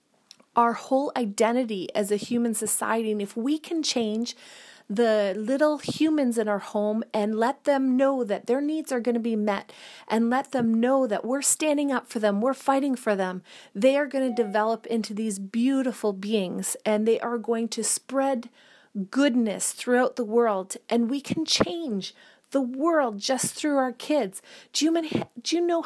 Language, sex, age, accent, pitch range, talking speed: English, female, 30-49, American, 210-270 Hz, 180 wpm